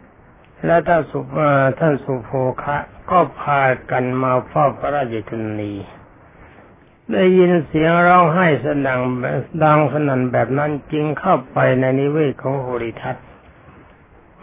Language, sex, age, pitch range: Thai, male, 60-79, 125-155 Hz